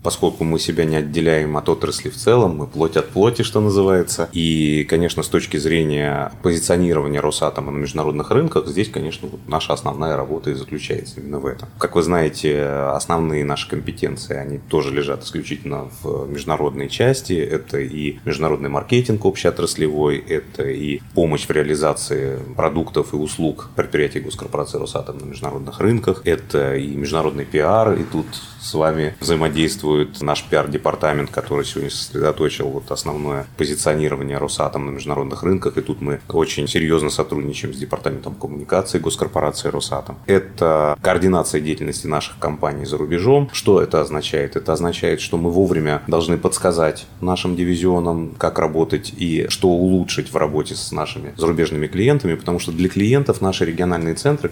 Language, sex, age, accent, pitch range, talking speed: Russian, male, 30-49, native, 75-90 Hz, 150 wpm